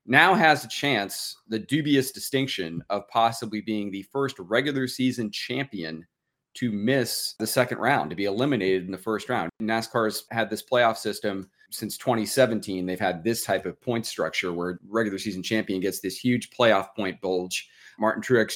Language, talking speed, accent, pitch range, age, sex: English, 170 wpm, American, 100-130 Hz, 30-49, male